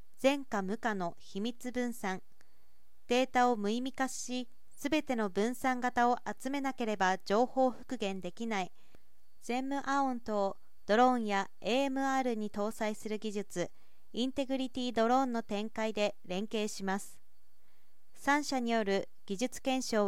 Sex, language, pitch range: female, Japanese, 200-250 Hz